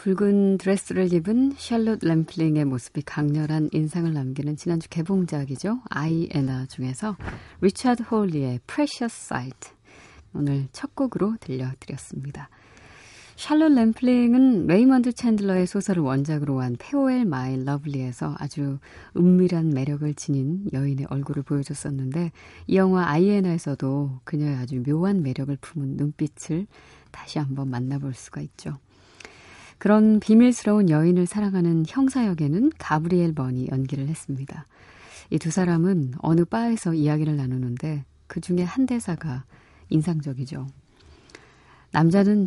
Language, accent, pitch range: Korean, native, 140-190 Hz